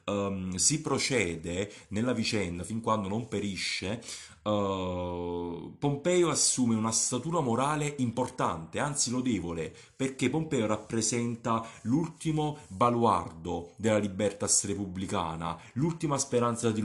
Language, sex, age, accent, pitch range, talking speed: Italian, male, 30-49, native, 90-120 Hz, 105 wpm